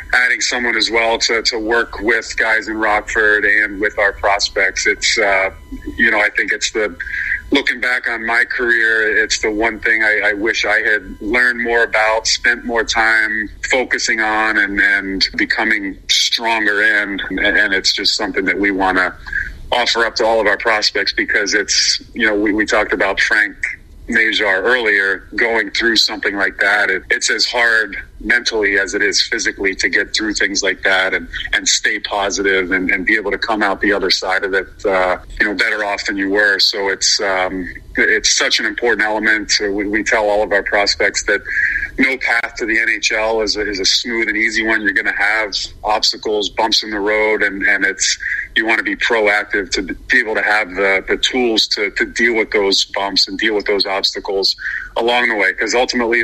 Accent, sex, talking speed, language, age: American, male, 200 wpm, English, 40-59